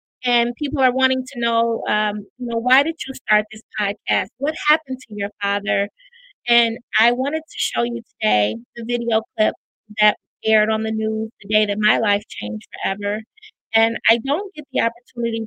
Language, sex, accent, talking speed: English, female, American, 185 wpm